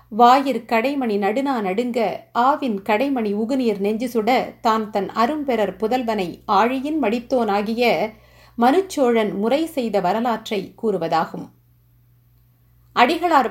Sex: female